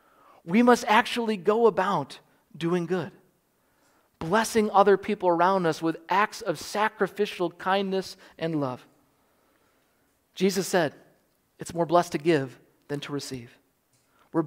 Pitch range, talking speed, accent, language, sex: 150-190 Hz, 125 wpm, American, English, male